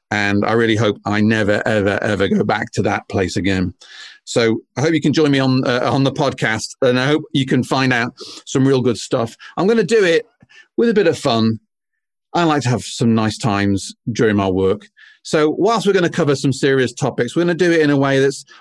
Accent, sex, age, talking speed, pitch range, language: British, male, 40-59, 240 wpm, 110-150 Hz, English